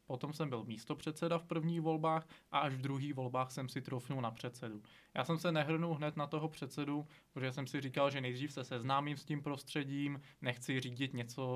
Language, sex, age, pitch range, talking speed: Czech, male, 20-39, 125-145 Hz, 210 wpm